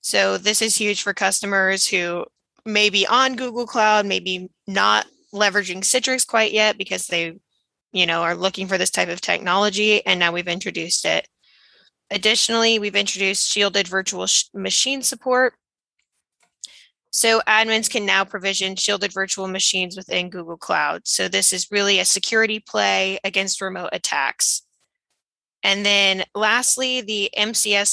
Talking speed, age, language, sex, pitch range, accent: 145 wpm, 20-39, English, female, 185-220 Hz, American